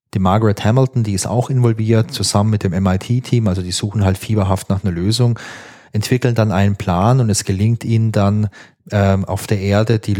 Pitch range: 100-120 Hz